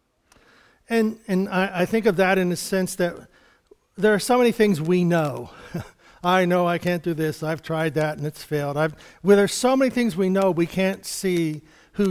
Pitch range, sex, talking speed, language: 165-215 Hz, male, 205 wpm, English